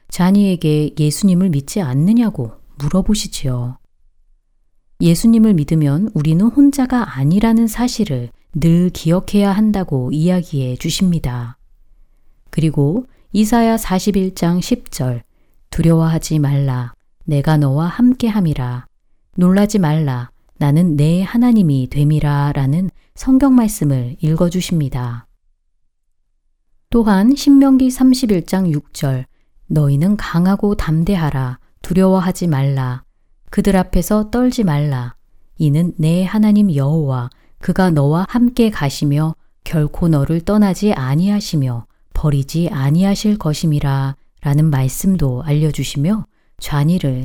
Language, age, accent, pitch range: Korean, 40-59, native, 140-195 Hz